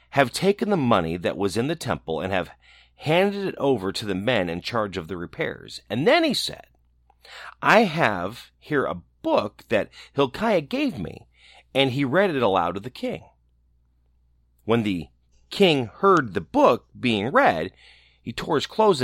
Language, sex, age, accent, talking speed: English, male, 40-59, American, 175 wpm